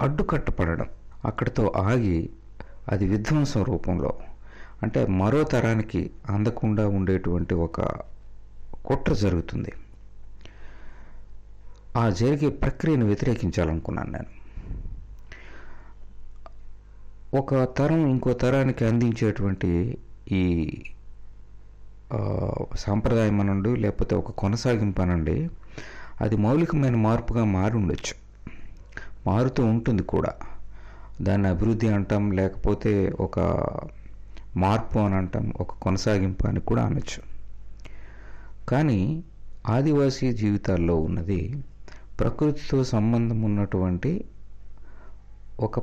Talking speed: 75 wpm